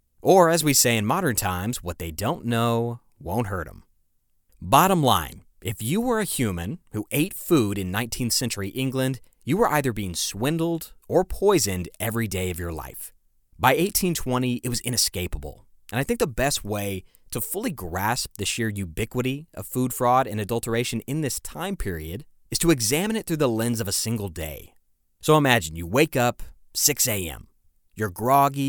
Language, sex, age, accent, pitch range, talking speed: English, male, 30-49, American, 95-130 Hz, 180 wpm